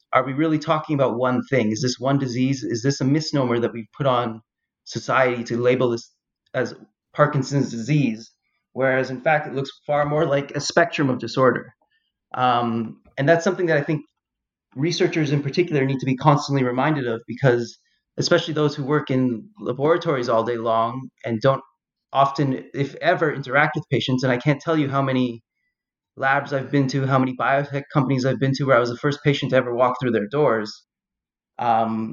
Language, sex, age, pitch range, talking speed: English, male, 30-49, 125-145 Hz, 190 wpm